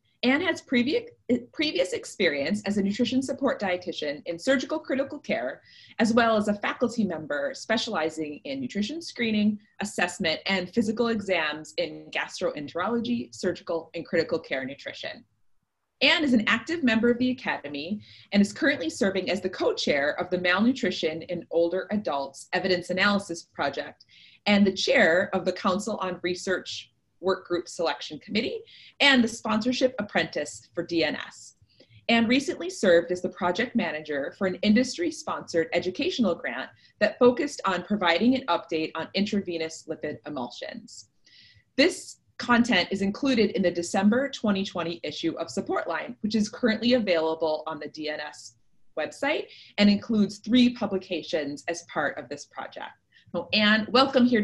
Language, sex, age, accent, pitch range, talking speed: English, female, 30-49, American, 170-245 Hz, 145 wpm